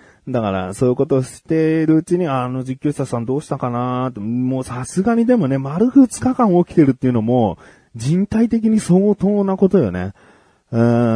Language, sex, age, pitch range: Japanese, male, 30-49, 100-150 Hz